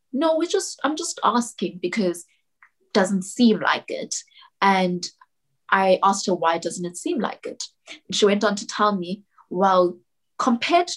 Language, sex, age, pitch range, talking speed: English, female, 20-39, 175-210 Hz, 170 wpm